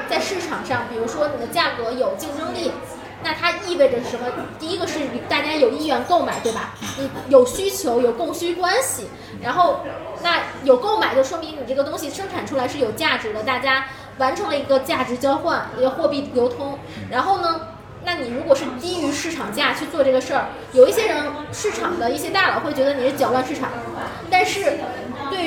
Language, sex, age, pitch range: Chinese, female, 20-39, 265-345 Hz